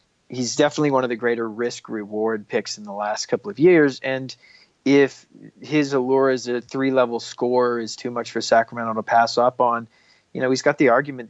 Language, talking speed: English, 205 wpm